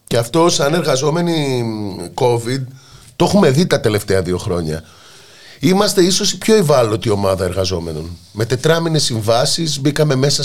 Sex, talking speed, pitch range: male, 140 wpm, 100-150 Hz